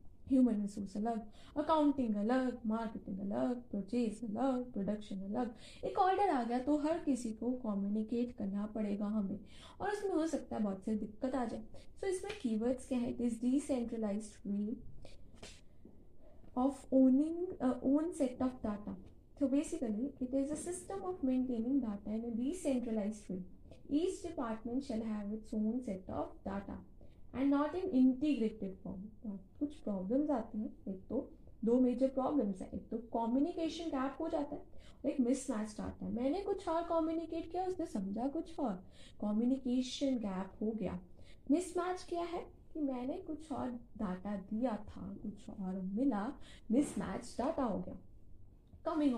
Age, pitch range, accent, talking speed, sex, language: 20-39, 215-285 Hz, native, 160 wpm, female, Hindi